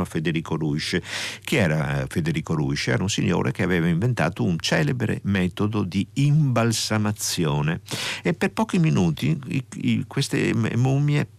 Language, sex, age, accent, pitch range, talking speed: Italian, male, 50-69, native, 95-130 Hz, 135 wpm